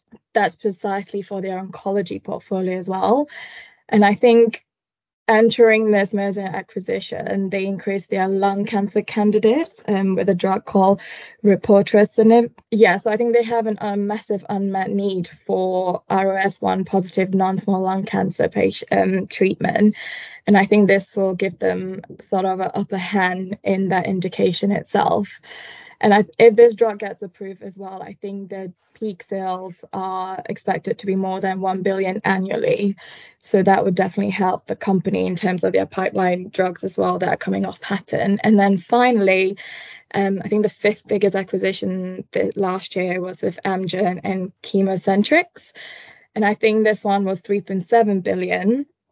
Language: English